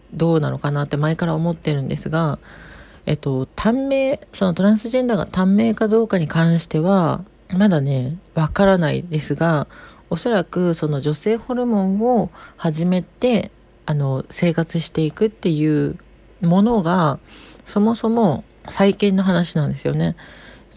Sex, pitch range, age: female, 150-195 Hz, 40-59